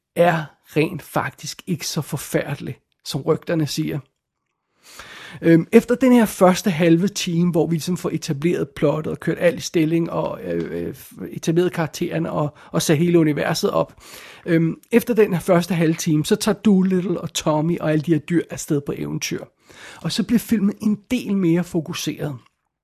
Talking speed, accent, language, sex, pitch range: 160 wpm, native, Danish, male, 160-195 Hz